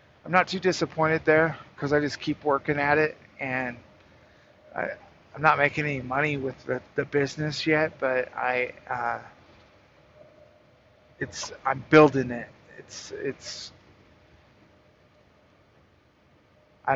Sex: male